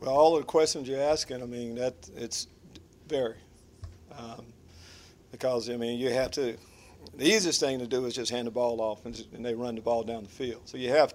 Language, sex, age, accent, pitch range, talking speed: English, male, 50-69, American, 120-175 Hz, 235 wpm